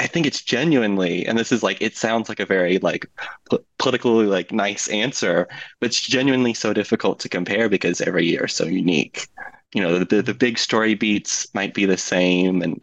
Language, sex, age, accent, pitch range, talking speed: English, male, 20-39, American, 90-125 Hz, 205 wpm